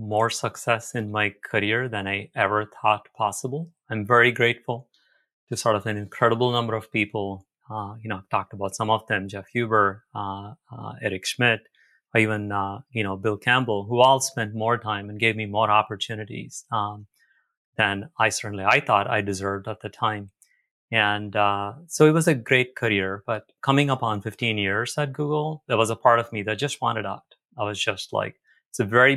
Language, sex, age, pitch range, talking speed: English, male, 30-49, 105-135 Hz, 200 wpm